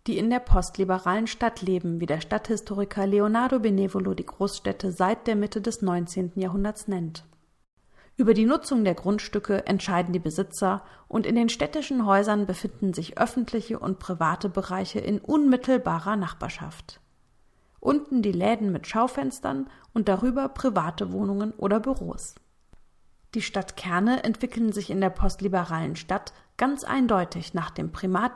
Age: 40-59